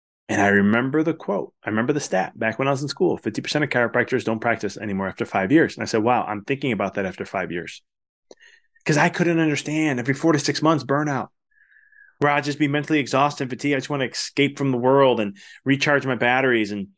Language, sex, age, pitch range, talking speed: English, male, 20-39, 100-145 Hz, 235 wpm